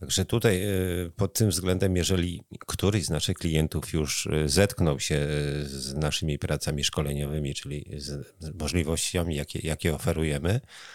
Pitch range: 75-95 Hz